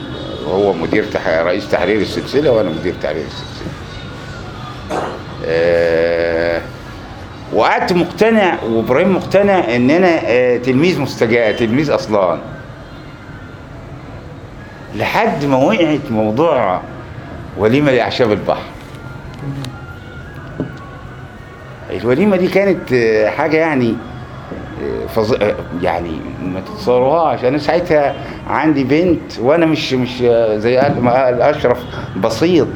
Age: 50-69